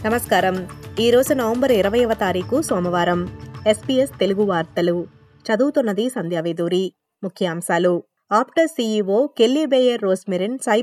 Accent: native